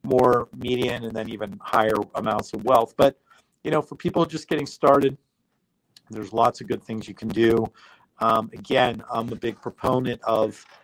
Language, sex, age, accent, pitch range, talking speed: English, male, 50-69, American, 115-140 Hz, 175 wpm